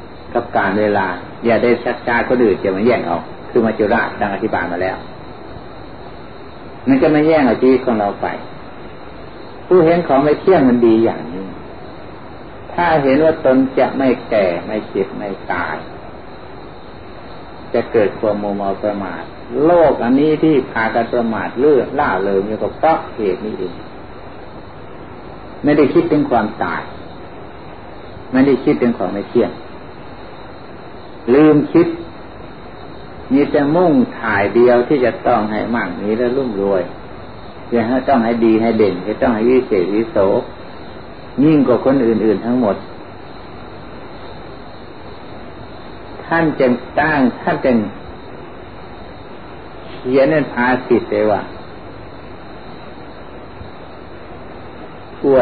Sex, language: male, Thai